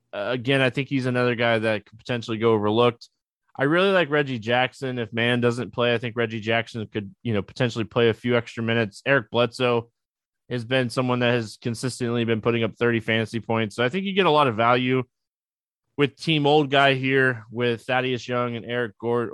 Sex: male